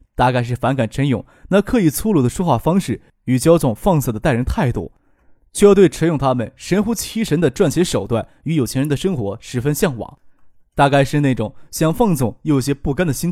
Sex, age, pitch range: male, 20-39, 120-175 Hz